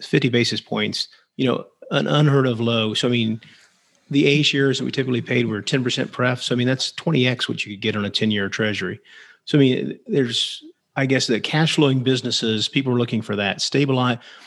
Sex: male